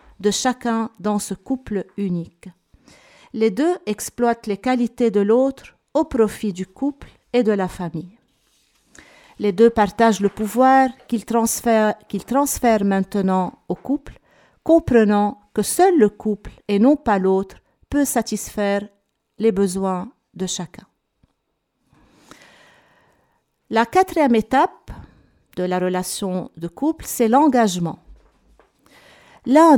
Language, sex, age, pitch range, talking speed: French, female, 50-69, 195-255 Hz, 115 wpm